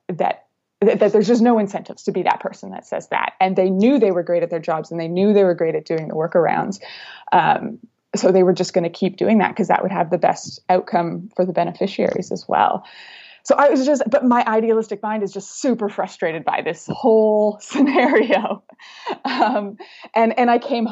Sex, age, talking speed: female, 20-39, 215 wpm